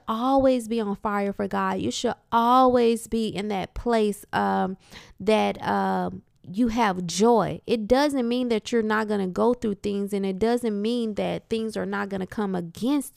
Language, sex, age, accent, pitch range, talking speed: English, female, 20-39, American, 200-240 Hz, 190 wpm